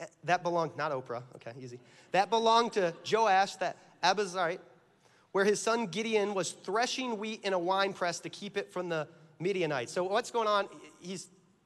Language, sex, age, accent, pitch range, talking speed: English, male, 30-49, American, 170-225 Hz, 175 wpm